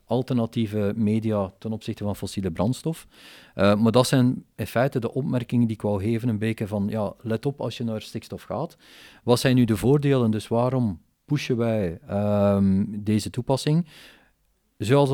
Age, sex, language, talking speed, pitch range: 40-59, male, Dutch, 165 wpm, 105-125 Hz